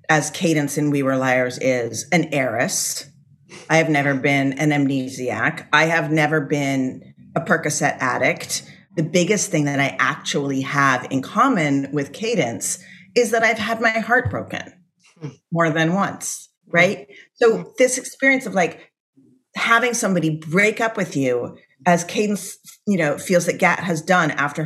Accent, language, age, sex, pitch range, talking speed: American, English, 30-49, female, 140-180 Hz, 160 wpm